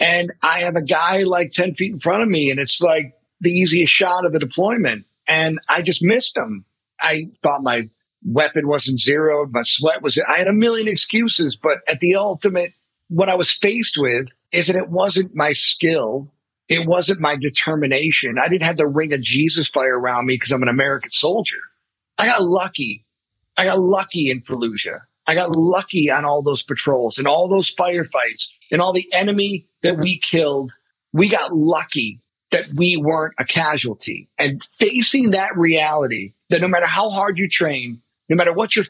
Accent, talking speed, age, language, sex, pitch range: American, 190 wpm, 40-59, English, male, 140-185 Hz